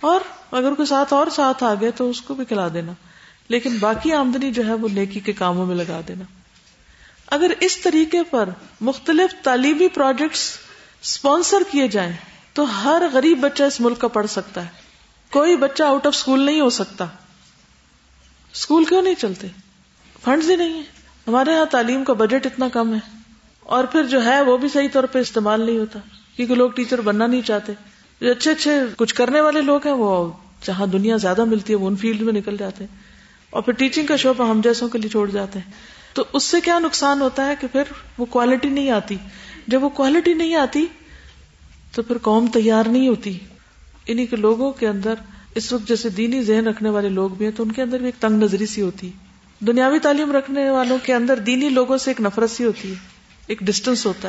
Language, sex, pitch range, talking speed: Urdu, female, 210-280 Hz, 205 wpm